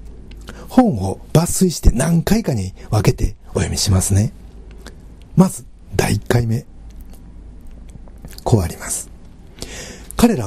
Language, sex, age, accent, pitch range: Japanese, male, 60-79, native, 85-130 Hz